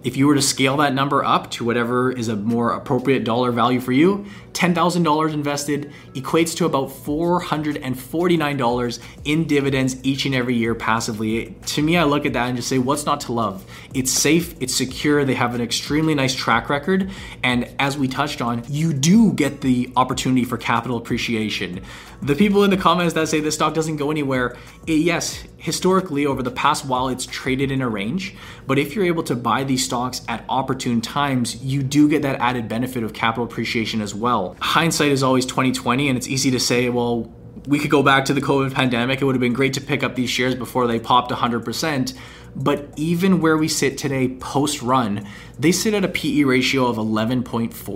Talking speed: 200 wpm